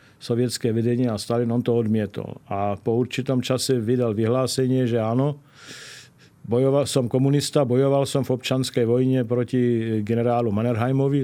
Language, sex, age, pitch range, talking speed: Slovak, male, 50-69, 115-135 Hz, 140 wpm